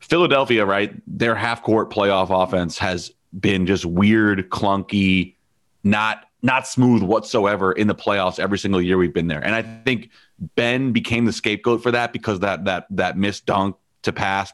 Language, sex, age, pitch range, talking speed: English, male, 30-49, 95-115 Hz, 175 wpm